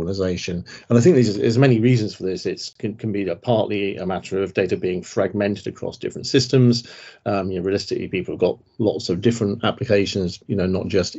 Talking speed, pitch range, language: 210 wpm, 95-115 Hz, English